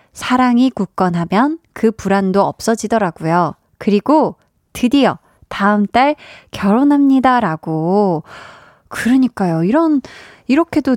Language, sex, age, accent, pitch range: Korean, female, 20-39, native, 185-260 Hz